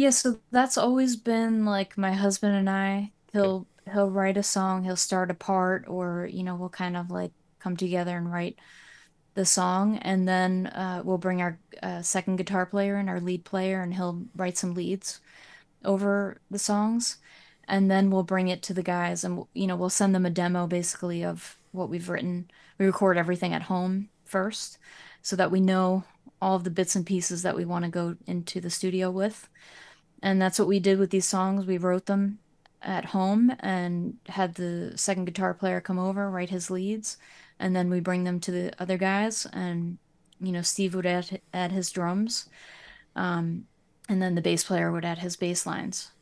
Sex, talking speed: female, 200 wpm